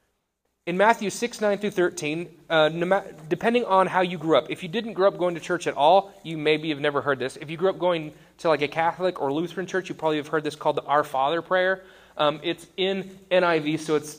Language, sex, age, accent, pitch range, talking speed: English, male, 30-49, American, 145-190 Hz, 240 wpm